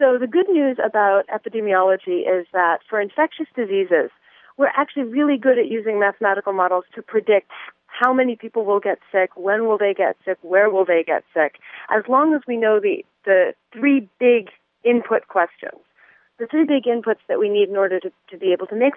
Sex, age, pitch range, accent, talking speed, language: female, 40-59, 180-220 Hz, American, 200 wpm, English